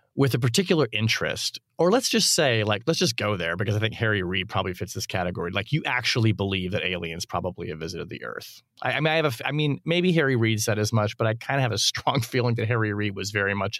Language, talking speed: English, 265 wpm